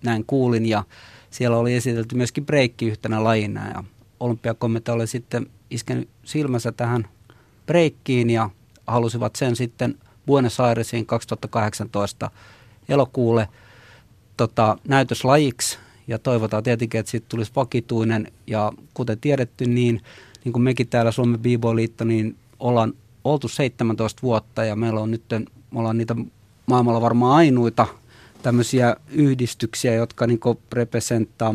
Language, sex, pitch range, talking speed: Finnish, male, 110-125 Hz, 125 wpm